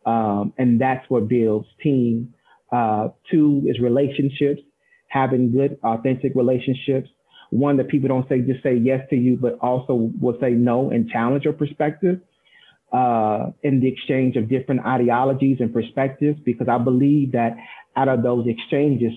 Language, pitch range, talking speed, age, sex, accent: English, 120-145 Hz, 155 wpm, 40-59, male, American